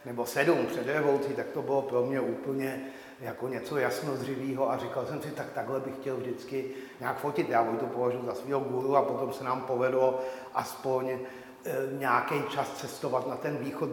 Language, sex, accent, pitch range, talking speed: Czech, male, native, 130-150 Hz, 185 wpm